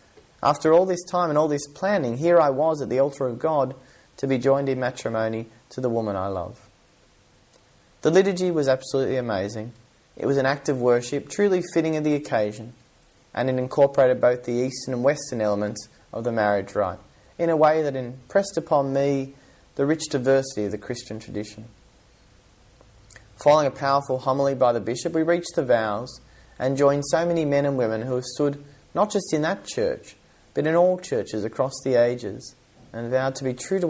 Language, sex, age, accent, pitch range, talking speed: English, male, 30-49, Australian, 110-145 Hz, 190 wpm